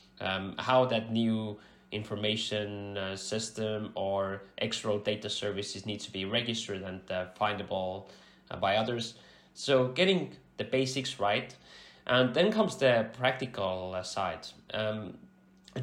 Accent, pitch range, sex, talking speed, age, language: Finnish, 100-115 Hz, male, 130 wpm, 20-39, English